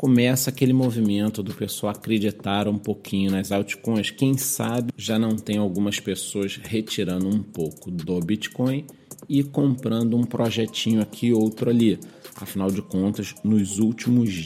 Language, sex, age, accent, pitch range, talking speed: Portuguese, male, 40-59, Brazilian, 100-125 Hz, 140 wpm